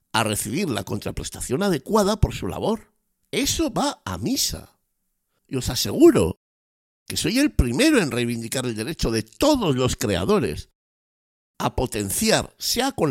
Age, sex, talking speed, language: 60-79, male, 140 wpm, Spanish